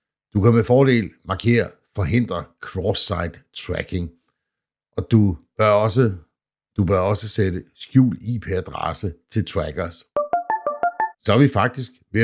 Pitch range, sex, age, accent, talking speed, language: 85-115 Hz, male, 60-79, native, 125 wpm, Danish